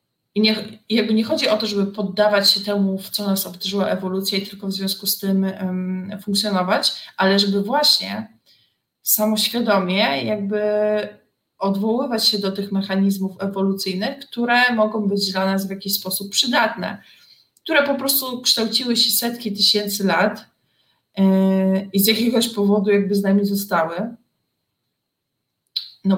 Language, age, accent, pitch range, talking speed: Polish, 20-39, native, 185-210 Hz, 135 wpm